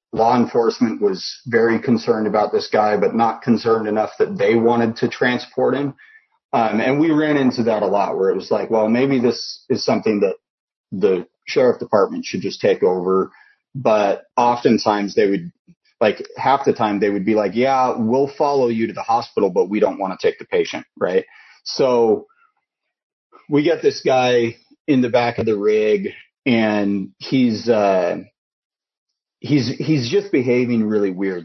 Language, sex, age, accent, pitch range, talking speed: English, male, 30-49, American, 105-145 Hz, 175 wpm